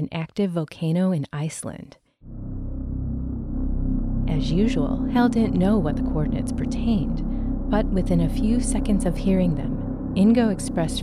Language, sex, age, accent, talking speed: English, female, 30-49, American, 130 wpm